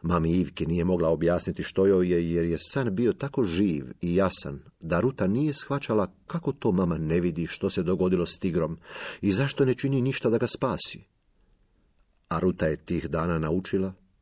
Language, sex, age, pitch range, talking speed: Croatian, male, 50-69, 85-100 Hz, 185 wpm